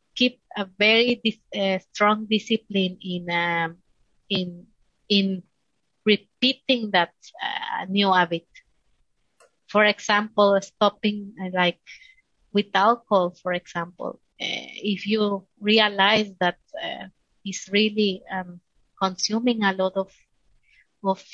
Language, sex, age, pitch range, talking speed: English, female, 30-49, 185-225 Hz, 105 wpm